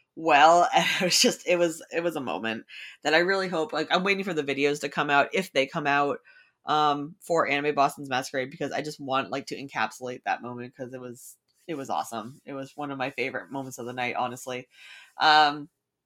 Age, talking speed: 20-39, 220 wpm